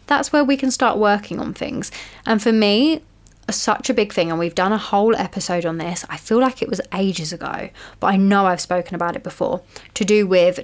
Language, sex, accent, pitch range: English, female, British, 180-215 Hz